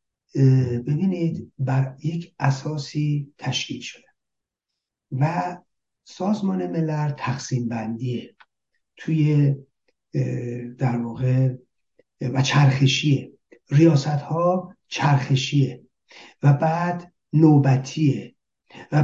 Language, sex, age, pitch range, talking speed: Persian, male, 60-79, 130-170 Hz, 75 wpm